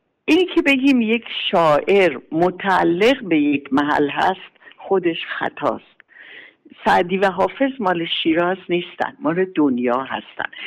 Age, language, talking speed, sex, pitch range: 60-79, Persian, 120 wpm, female, 150-225 Hz